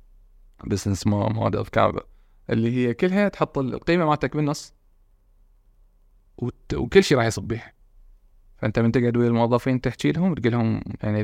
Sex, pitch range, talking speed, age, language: male, 105-150 Hz, 135 wpm, 20-39, Arabic